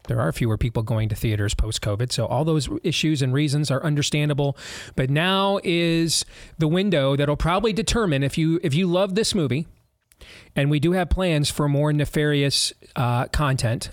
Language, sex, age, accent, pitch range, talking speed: English, male, 40-59, American, 130-160 Hz, 175 wpm